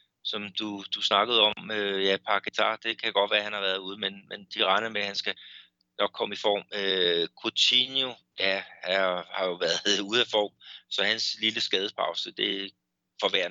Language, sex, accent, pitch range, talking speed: Danish, male, native, 90-105 Hz, 190 wpm